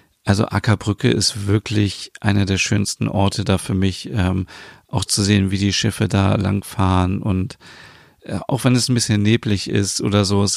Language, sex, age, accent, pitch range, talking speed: German, male, 40-59, German, 95-110 Hz, 185 wpm